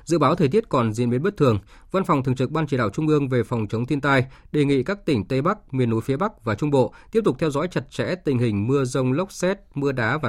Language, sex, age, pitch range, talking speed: Vietnamese, male, 20-39, 120-155 Hz, 295 wpm